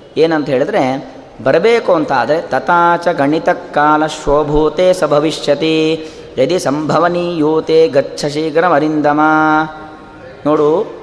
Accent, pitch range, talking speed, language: native, 155-200 Hz, 85 wpm, Kannada